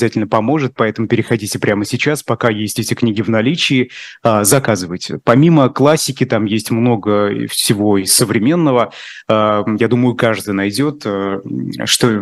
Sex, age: male, 30-49